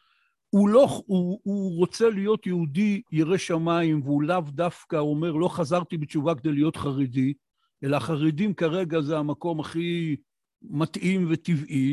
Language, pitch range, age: Hebrew, 145-185 Hz, 60-79